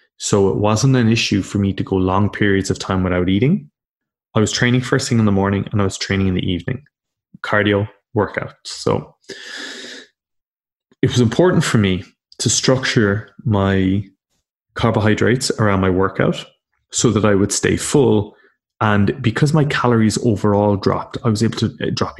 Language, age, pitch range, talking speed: English, 20-39, 95-120 Hz, 170 wpm